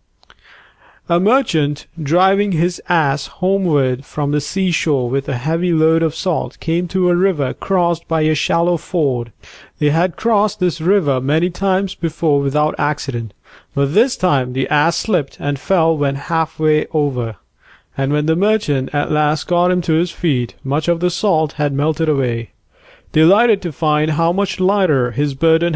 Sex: male